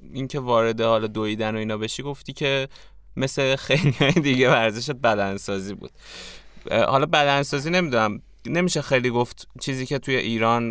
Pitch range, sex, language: 105-135 Hz, male, Persian